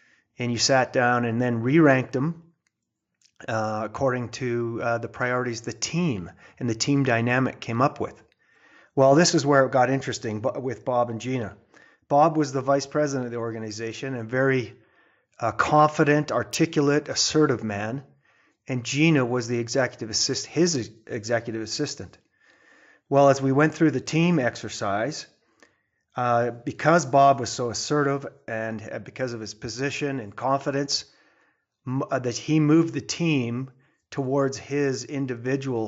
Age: 30-49